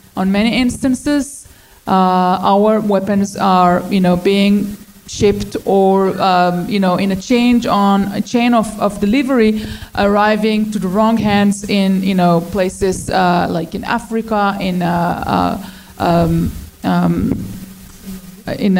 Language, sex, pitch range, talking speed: English, female, 190-220 Hz, 120 wpm